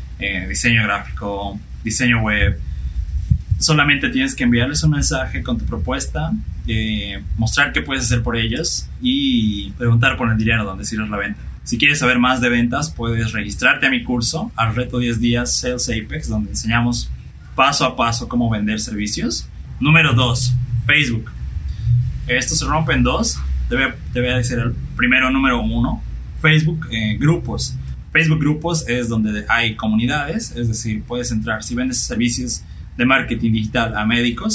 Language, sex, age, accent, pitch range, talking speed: Spanish, male, 20-39, Mexican, 105-125 Hz, 160 wpm